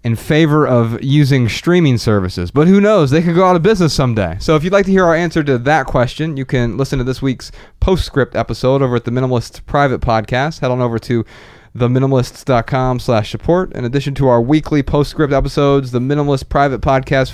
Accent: American